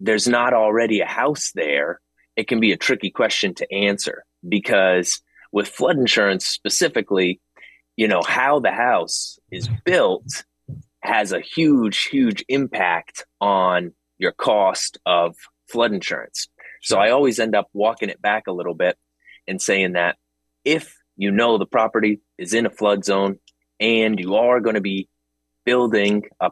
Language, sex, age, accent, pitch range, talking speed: English, male, 30-49, American, 90-115 Hz, 155 wpm